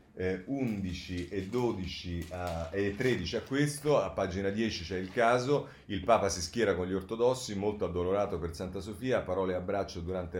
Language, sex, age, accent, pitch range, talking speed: Italian, male, 40-59, native, 85-100 Hz, 165 wpm